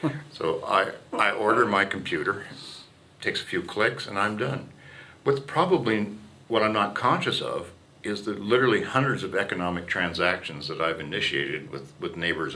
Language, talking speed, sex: English, 160 wpm, male